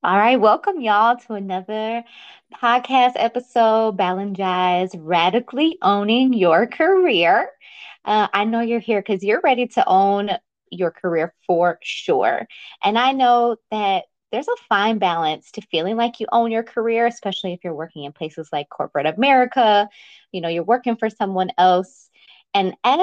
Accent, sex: American, female